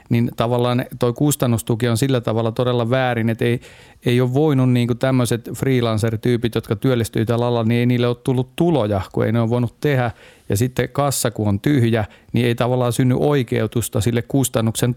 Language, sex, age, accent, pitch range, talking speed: Finnish, male, 40-59, native, 115-130 Hz, 185 wpm